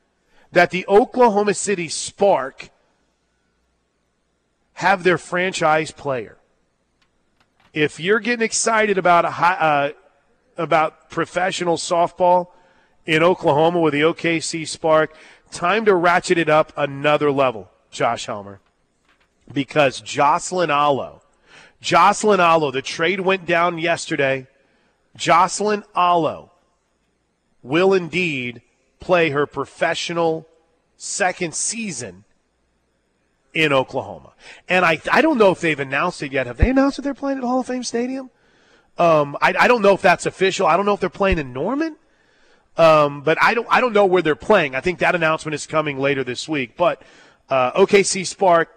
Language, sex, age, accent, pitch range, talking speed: English, male, 40-59, American, 145-185 Hz, 140 wpm